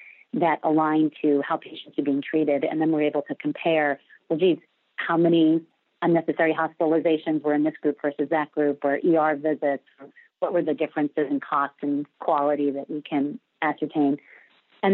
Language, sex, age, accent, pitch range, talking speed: English, female, 40-59, American, 145-165 Hz, 175 wpm